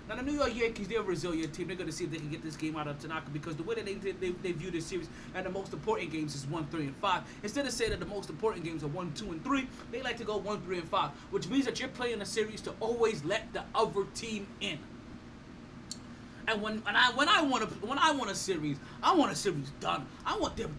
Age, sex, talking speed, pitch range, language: 20-39, male, 275 wpm, 165-225 Hz, English